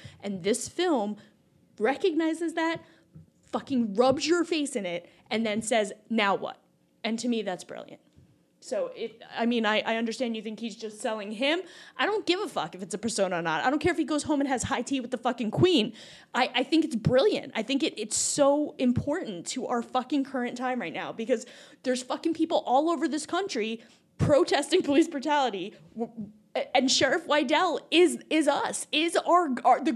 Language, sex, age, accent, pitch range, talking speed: English, female, 10-29, American, 240-325 Hz, 195 wpm